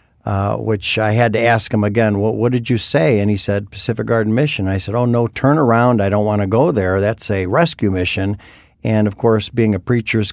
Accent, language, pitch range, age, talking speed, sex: American, English, 100-115 Hz, 50-69, 230 wpm, male